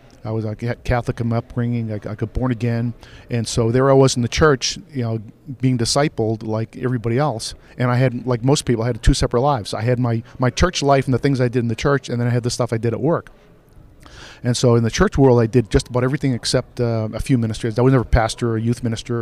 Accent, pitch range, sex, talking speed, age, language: American, 115-135 Hz, male, 265 wpm, 50-69, English